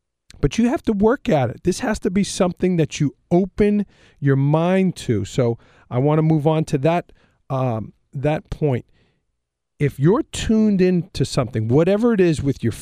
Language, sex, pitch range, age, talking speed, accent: English, male, 125-175 Hz, 40-59, 185 wpm, American